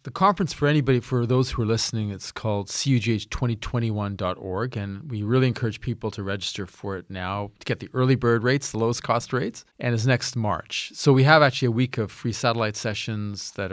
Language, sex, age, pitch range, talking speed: English, male, 40-59, 100-125 Hz, 205 wpm